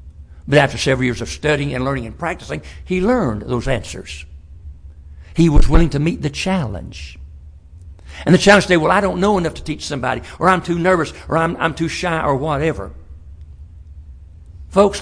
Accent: American